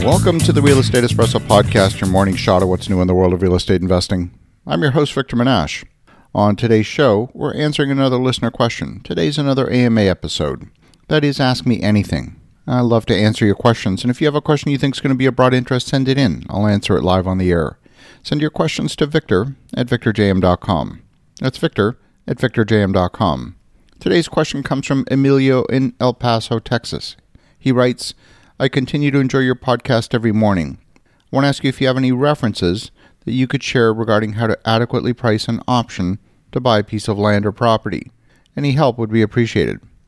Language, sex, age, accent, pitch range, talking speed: English, male, 50-69, American, 105-130 Hz, 205 wpm